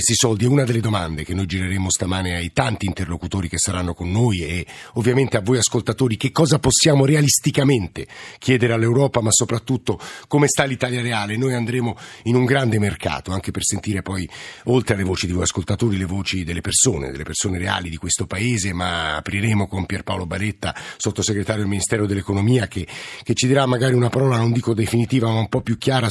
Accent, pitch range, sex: native, 100-125 Hz, male